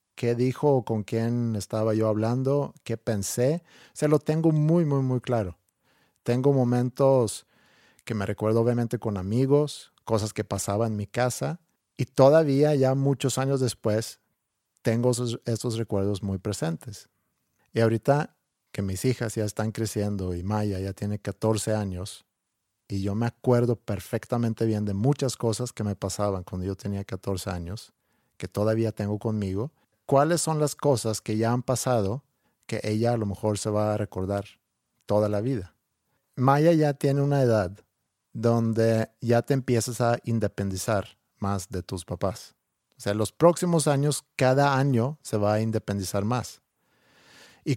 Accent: Mexican